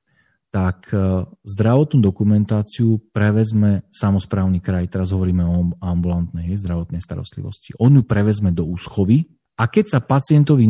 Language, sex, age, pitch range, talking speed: Slovak, male, 40-59, 90-110 Hz, 120 wpm